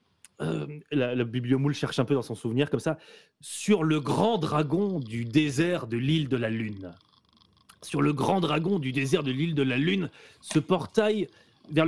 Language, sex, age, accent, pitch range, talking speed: French, male, 30-49, French, 135-170 Hz, 185 wpm